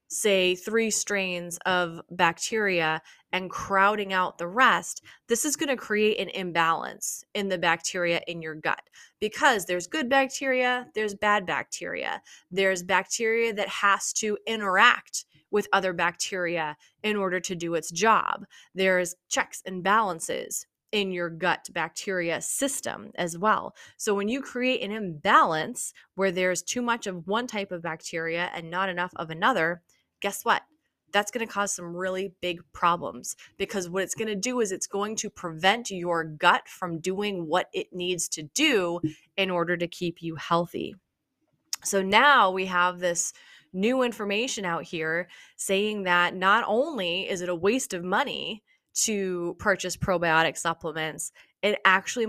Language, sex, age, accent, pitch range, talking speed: English, female, 20-39, American, 175-210 Hz, 155 wpm